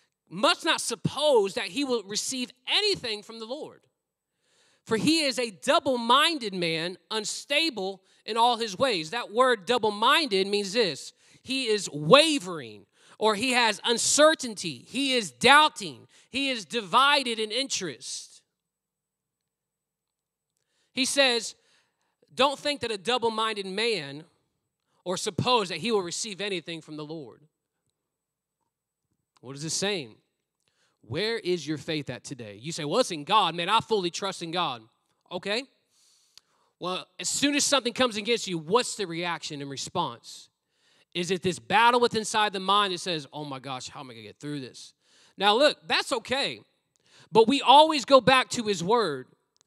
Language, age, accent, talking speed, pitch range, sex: English, 30-49, American, 155 wpm, 160-240 Hz, male